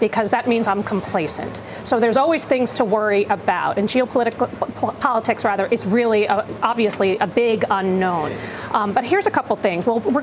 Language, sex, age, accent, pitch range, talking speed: English, female, 40-59, American, 215-285 Hz, 190 wpm